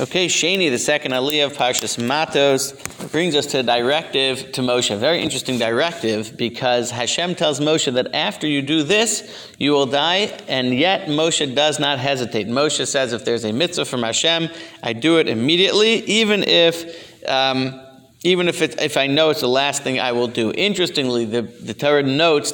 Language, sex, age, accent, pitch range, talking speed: English, male, 40-59, American, 125-170 Hz, 185 wpm